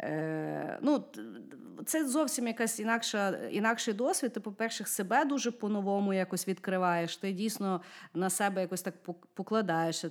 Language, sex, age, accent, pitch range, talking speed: Ukrainian, female, 30-49, native, 170-220 Hz, 130 wpm